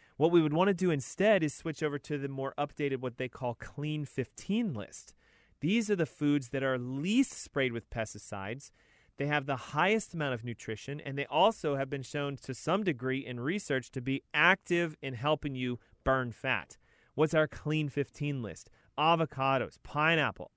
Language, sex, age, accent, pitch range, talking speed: English, male, 30-49, American, 130-165 Hz, 185 wpm